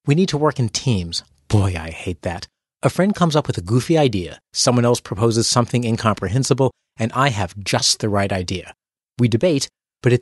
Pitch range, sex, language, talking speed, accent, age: 110-145 Hz, male, English, 200 wpm, American, 30-49